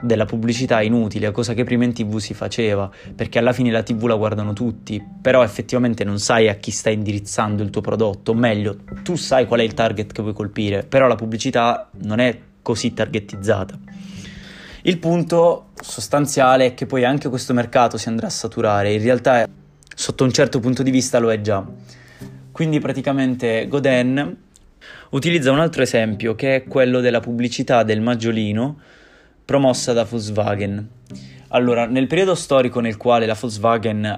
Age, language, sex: 20-39, Indonesian, male